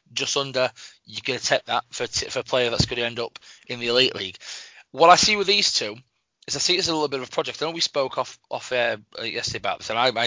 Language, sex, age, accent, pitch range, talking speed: English, male, 20-39, British, 120-145 Hz, 300 wpm